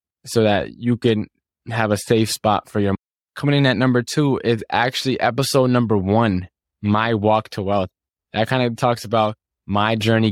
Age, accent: 20-39, American